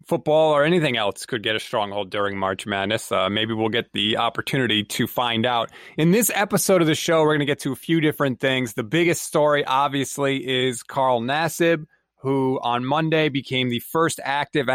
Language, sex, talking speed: English, male, 200 wpm